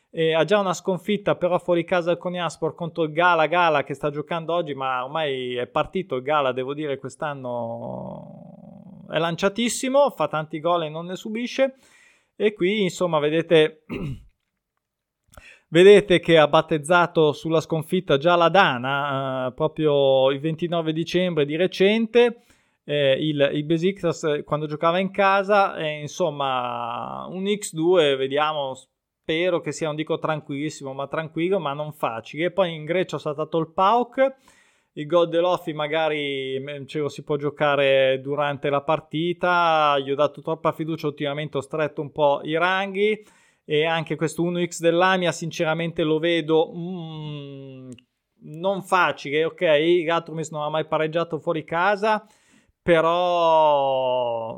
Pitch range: 145-180 Hz